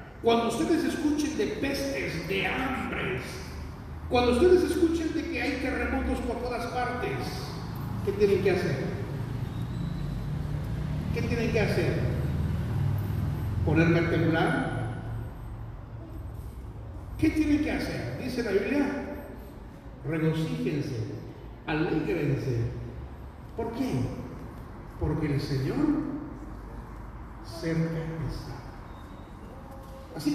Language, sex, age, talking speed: Spanish, male, 40-59, 90 wpm